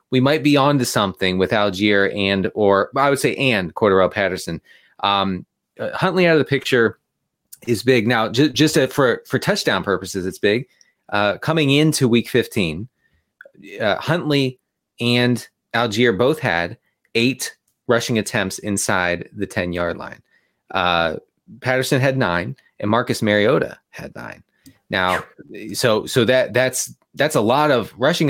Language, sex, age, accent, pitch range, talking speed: English, male, 30-49, American, 105-140 Hz, 150 wpm